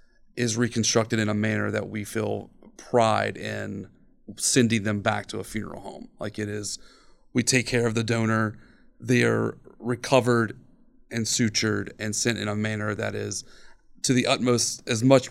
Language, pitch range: English, 105-120 Hz